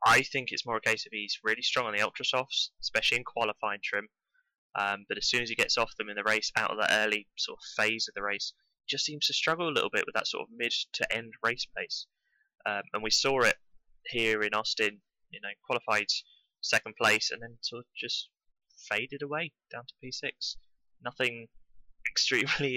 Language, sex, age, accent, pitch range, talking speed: English, male, 10-29, British, 110-140 Hz, 210 wpm